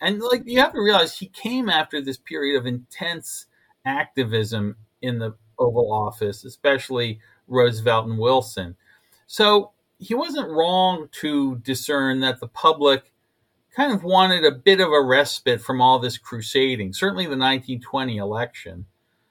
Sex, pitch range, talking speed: male, 115-150 Hz, 145 wpm